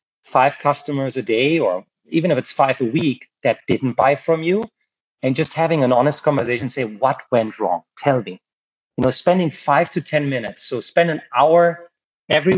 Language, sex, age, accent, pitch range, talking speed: English, male, 40-59, German, 125-155 Hz, 190 wpm